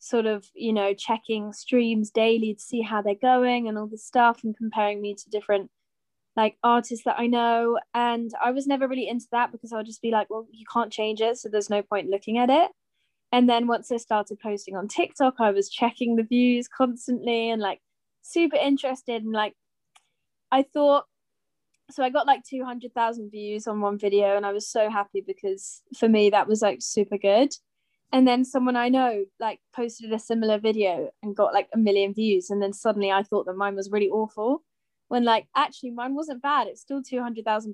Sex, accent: female, British